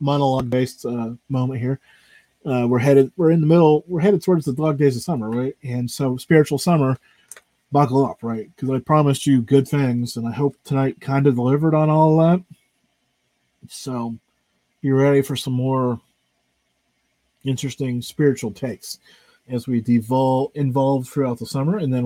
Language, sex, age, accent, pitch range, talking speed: English, male, 40-59, American, 125-155 Hz, 165 wpm